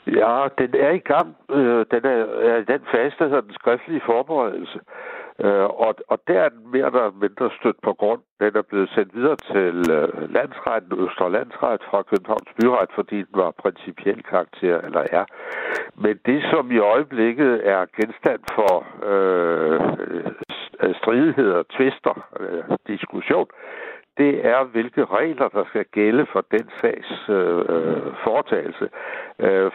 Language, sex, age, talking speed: Danish, male, 60-79, 145 wpm